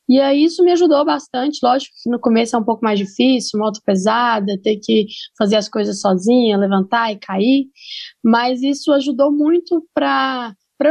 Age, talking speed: 10-29, 170 wpm